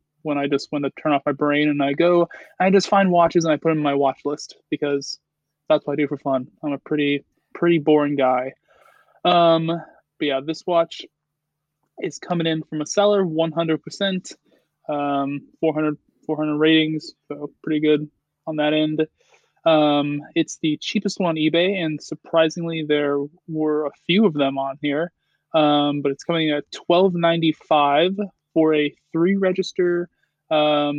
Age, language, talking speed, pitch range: 20-39, English, 165 wpm, 150-170 Hz